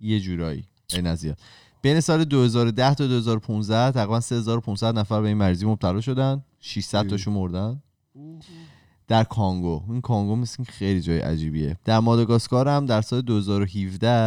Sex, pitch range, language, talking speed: male, 90-115 Hz, Persian, 135 wpm